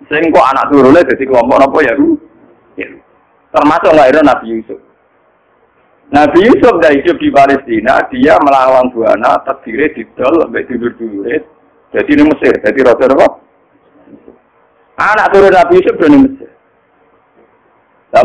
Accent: Indian